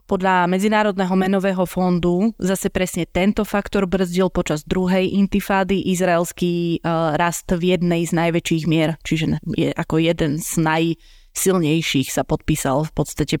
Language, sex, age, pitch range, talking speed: Slovak, female, 20-39, 160-185 Hz, 125 wpm